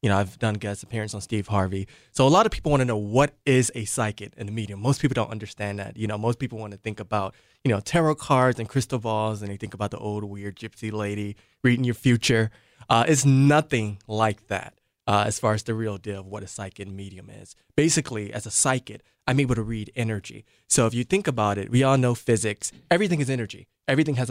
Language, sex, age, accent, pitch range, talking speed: English, male, 20-39, American, 105-125 Hz, 240 wpm